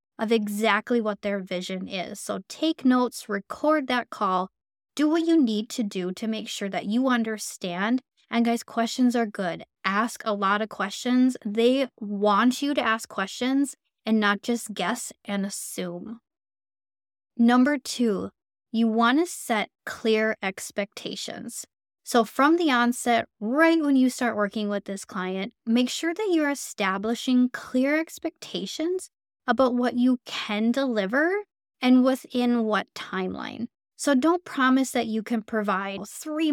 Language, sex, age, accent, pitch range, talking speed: English, female, 10-29, American, 210-265 Hz, 145 wpm